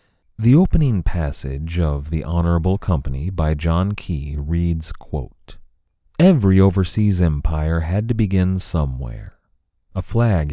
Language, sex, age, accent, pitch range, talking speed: English, male, 30-49, American, 75-100 Hz, 115 wpm